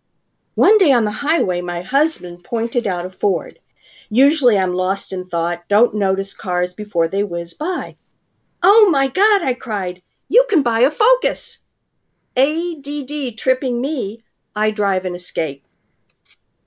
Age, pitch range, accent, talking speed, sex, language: 50-69, 180-270 Hz, American, 150 wpm, female, English